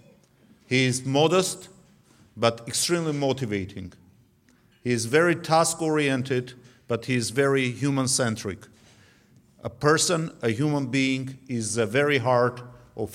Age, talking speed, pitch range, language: 50-69, 115 wpm, 110-140 Hz, English